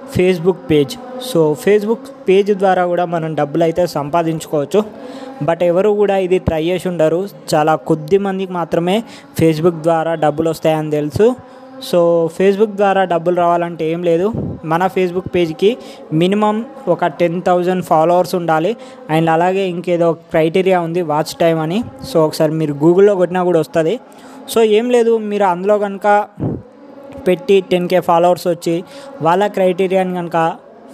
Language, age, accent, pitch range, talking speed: Telugu, 20-39, native, 165-195 Hz, 135 wpm